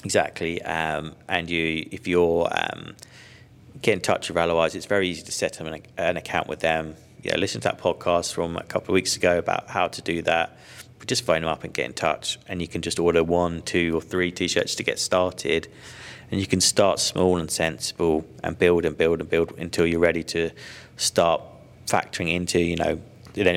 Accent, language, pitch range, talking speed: British, English, 85-90 Hz, 215 wpm